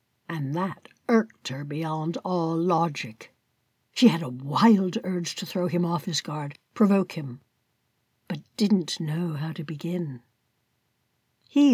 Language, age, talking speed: English, 60-79, 140 wpm